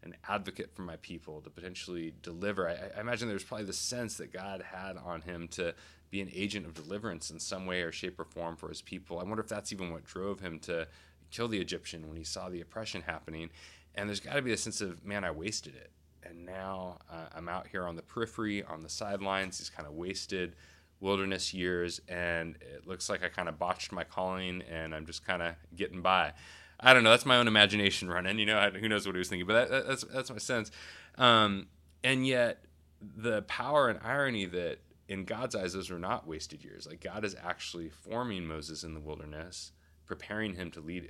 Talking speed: 225 wpm